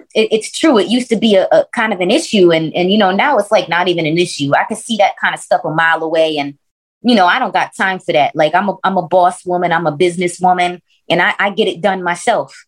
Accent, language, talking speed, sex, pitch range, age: American, English, 285 wpm, female, 180-225 Hz, 20-39